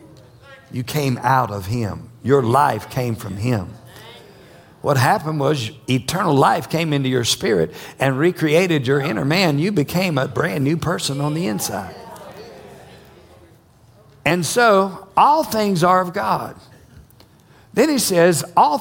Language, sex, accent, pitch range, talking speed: English, male, American, 135-185 Hz, 140 wpm